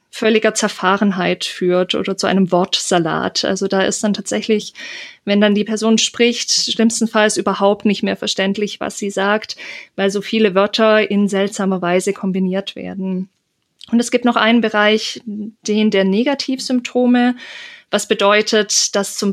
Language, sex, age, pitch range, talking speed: German, female, 20-39, 195-230 Hz, 145 wpm